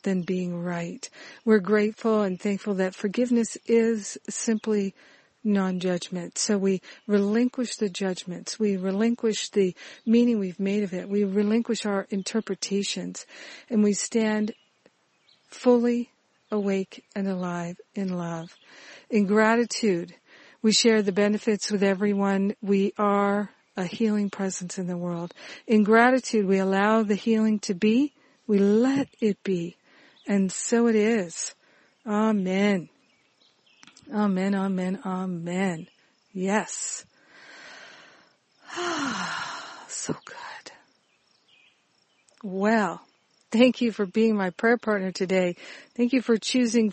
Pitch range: 190-235 Hz